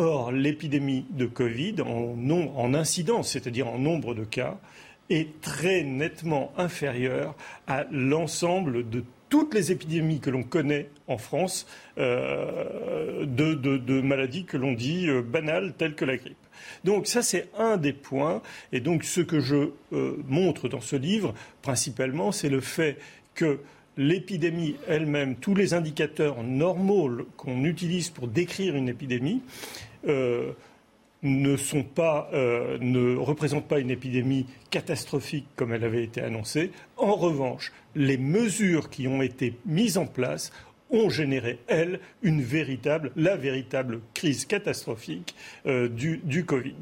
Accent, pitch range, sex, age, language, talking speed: French, 130-170 Hz, male, 40-59, French, 145 wpm